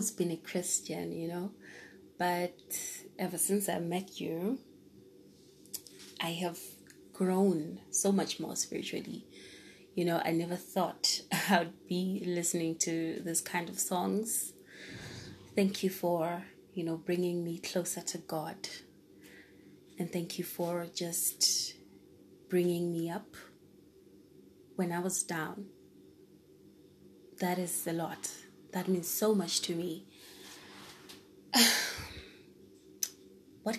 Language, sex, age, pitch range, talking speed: English, female, 20-39, 165-185 Hz, 115 wpm